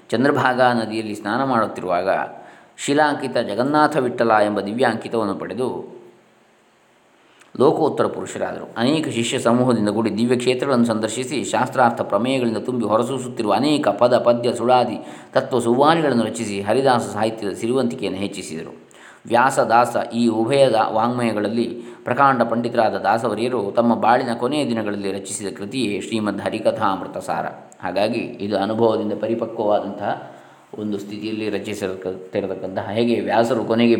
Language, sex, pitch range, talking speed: Kannada, male, 105-125 Hz, 105 wpm